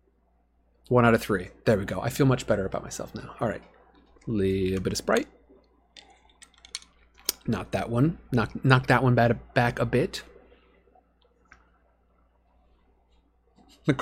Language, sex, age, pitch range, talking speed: English, male, 30-49, 105-155 Hz, 135 wpm